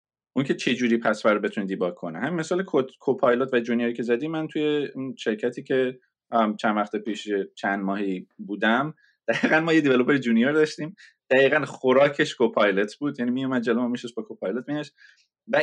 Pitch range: 115-150 Hz